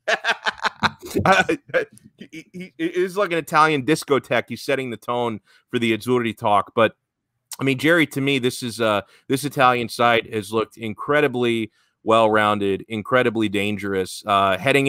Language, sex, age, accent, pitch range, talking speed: English, male, 30-49, American, 110-135 Hz, 140 wpm